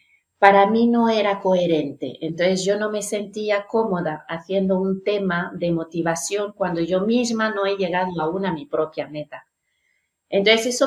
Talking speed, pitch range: 160 wpm, 175-215 Hz